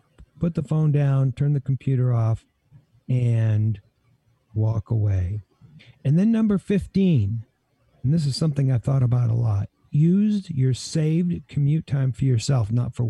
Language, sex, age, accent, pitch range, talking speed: English, male, 50-69, American, 120-145 Hz, 150 wpm